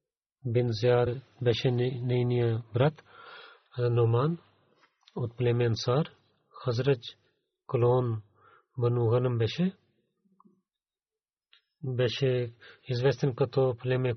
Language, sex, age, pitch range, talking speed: Bulgarian, male, 40-59, 120-155 Hz, 85 wpm